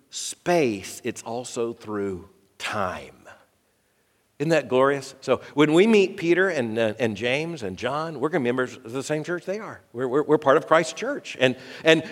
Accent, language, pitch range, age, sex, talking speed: American, English, 130-180 Hz, 50-69, male, 195 wpm